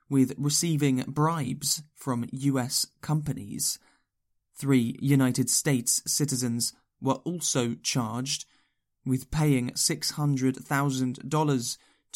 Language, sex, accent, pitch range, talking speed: English, male, British, 125-145 Hz, 80 wpm